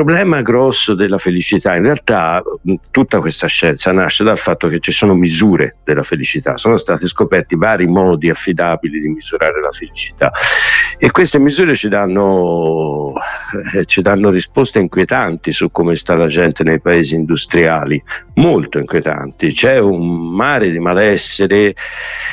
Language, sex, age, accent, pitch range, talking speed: Italian, male, 60-79, native, 85-105 Hz, 145 wpm